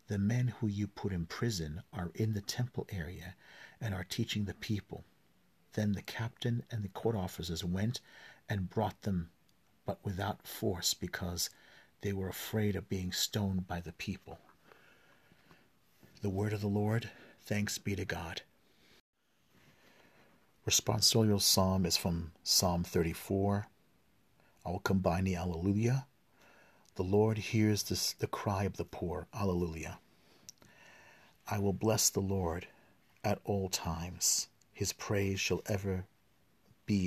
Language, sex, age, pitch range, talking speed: English, male, 50-69, 90-105 Hz, 135 wpm